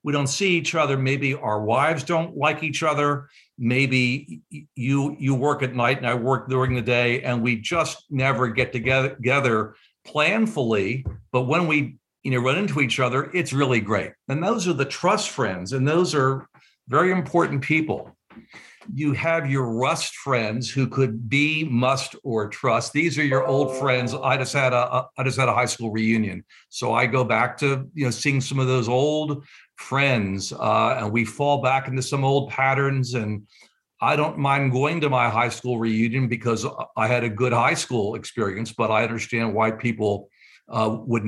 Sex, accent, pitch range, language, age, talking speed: male, American, 115-140 Hz, English, 60-79, 190 wpm